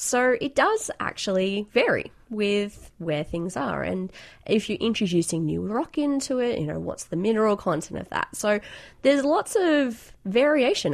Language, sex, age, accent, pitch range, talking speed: English, female, 20-39, Australian, 165-240 Hz, 165 wpm